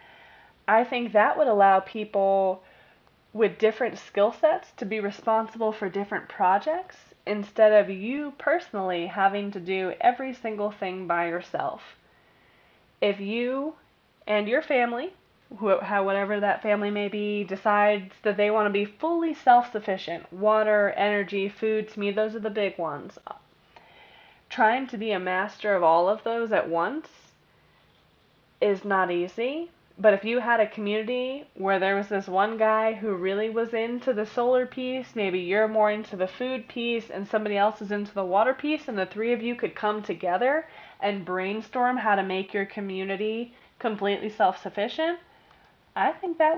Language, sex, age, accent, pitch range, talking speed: English, female, 20-39, American, 200-245 Hz, 160 wpm